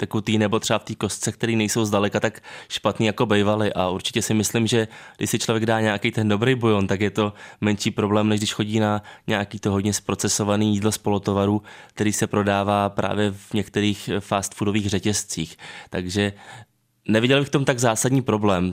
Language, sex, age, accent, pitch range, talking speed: Czech, male, 20-39, native, 105-120 Hz, 185 wpm